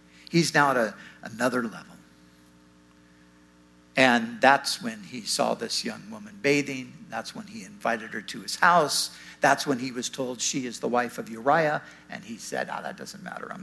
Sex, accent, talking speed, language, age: male, American, 190 wpm, English, 60-79